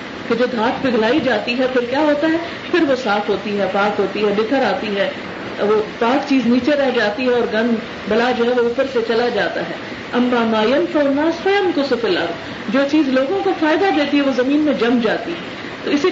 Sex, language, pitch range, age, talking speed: female, Urdu, 230-290 Hz, 40-59, 215 wpm